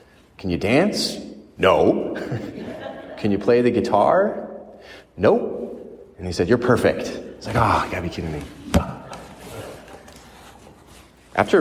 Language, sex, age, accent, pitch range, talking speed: English, male, 30-49, American, 90-110 Hz, 130 wpm